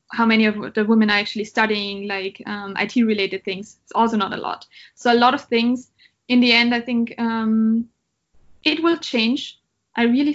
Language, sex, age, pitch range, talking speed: German, female, 20-39, 215-245 Hz, 195 wpm